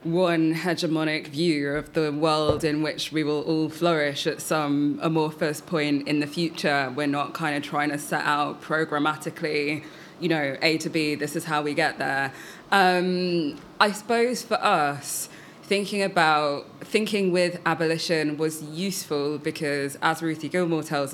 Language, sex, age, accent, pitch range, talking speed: English, female, 20-39, British, 150-165 Hz, 160 wpm